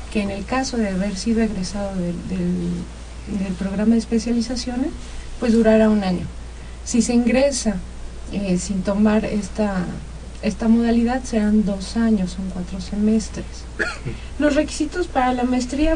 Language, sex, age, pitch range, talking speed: Spanish, female, 40-59, 190-230 Hz, 145 wpm